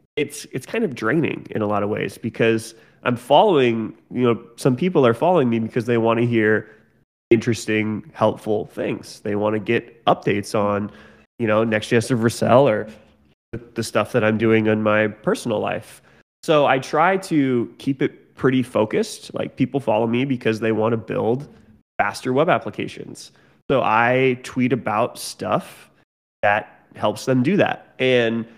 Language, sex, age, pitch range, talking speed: English, male, 20-39, 110-135 Hz, 170 wpm